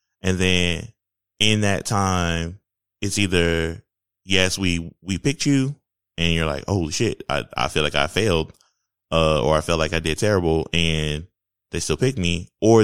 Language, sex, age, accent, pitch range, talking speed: English, male, 20-39, American, 85-105 Hz, 180 wpm